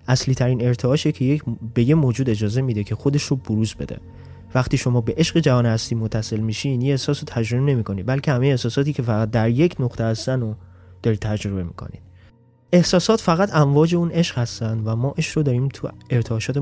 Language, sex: Persian, male